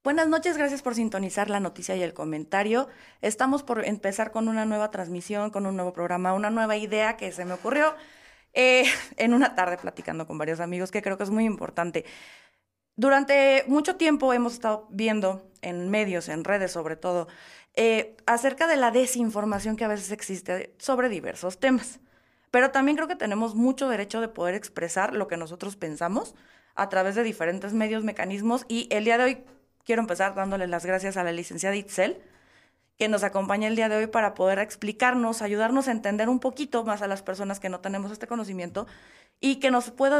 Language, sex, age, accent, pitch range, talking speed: Spanish, female, 20-39, Mexican, 195-255 Hz, 190 wpm